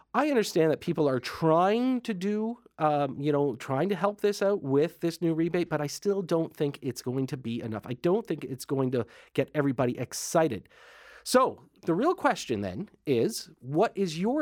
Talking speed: 200 wpm